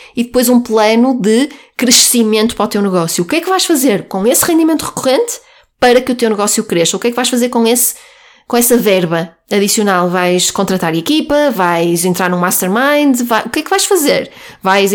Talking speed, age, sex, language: 215 wpm, 20-39, female, Portuguese